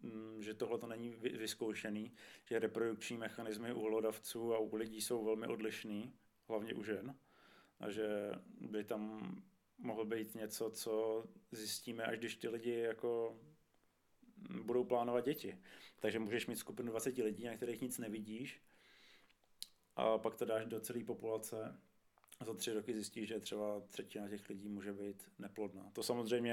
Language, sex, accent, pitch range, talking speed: Czech, male, native, 105-120 Hz, 150 wpm